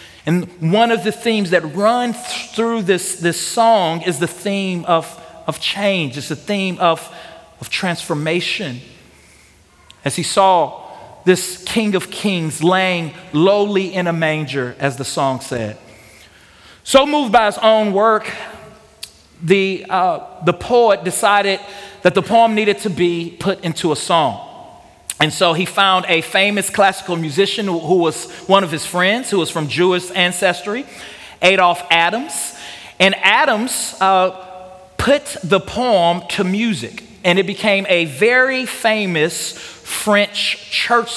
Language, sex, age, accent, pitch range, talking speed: English, male, 40-59, American, 165-205 Hz, 145 wpm